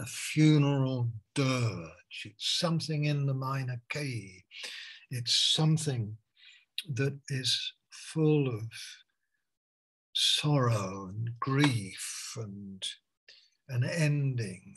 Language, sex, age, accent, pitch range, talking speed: English, male, 60-79, British, 115-140 Hz, 85 wpm